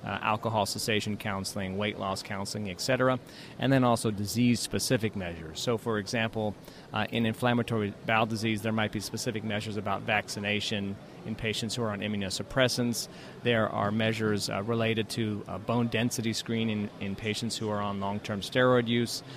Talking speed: 165 wpm